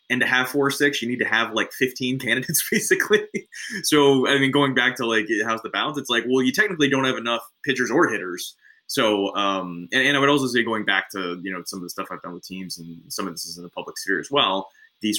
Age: 20-39